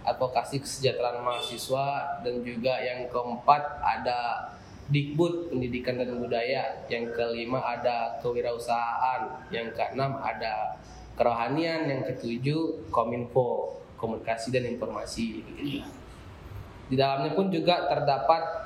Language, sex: Indonesian, male